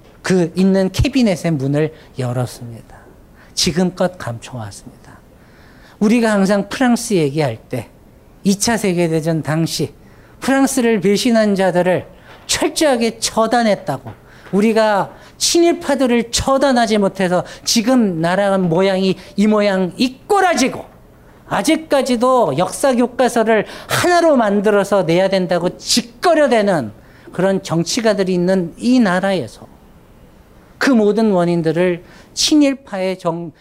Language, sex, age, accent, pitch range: Korean, male, 40-59, native, 150-220 Hz